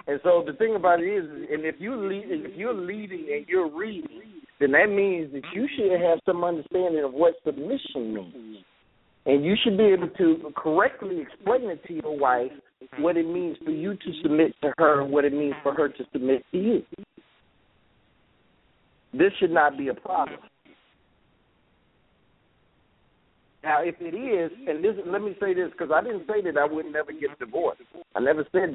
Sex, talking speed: male, 190 wpm